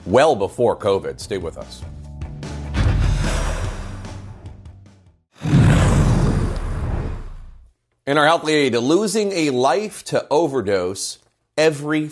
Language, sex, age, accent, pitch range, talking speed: English, male, 40-59, American, 90-120 Hz, 80 wpm